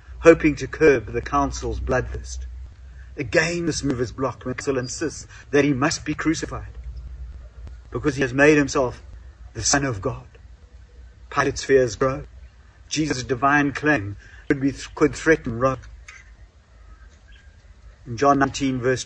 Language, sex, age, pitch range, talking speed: English, male, 50-69, 85-140 Hz, 135 wpm